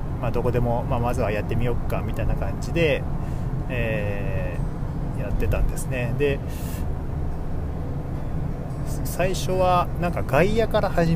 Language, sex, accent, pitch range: Japanese, male, native, 110-140 Hz